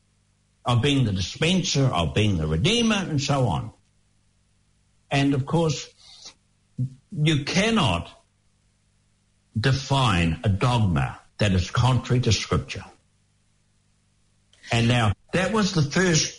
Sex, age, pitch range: male, 60-79, 105-160 Hz